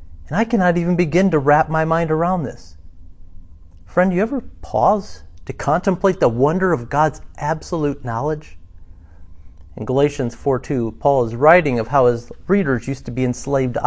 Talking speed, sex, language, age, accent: 165 wpm, male, English, 40-59, American